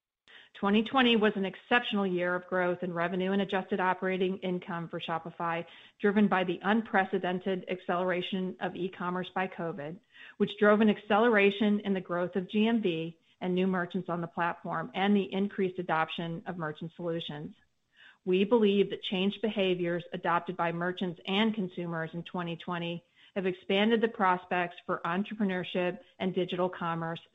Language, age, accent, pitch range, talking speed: English, 40-59, American, 175-205 Hz, 145 wpm